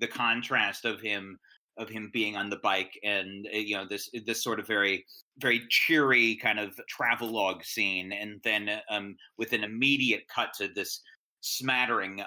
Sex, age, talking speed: male, 30-49, 165 wpm